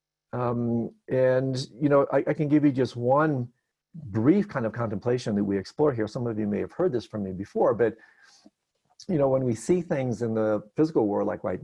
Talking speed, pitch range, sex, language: 215 wpm, 115-155 Hz, male, English